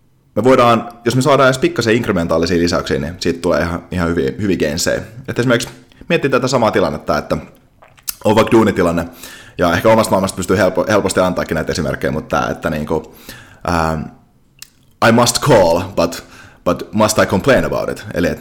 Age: 30-49